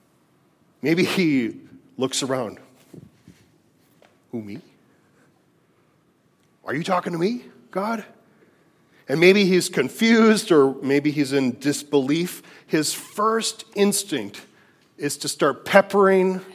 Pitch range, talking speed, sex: 125-190 Hz, 100 wpm, male